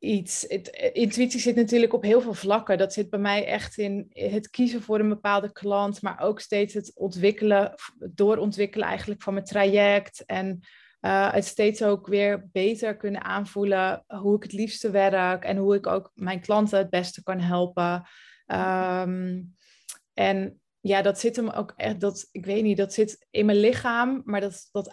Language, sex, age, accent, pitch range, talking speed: Dutch, female, 20-39, Dutch, 195-225 Hz, 170 wpm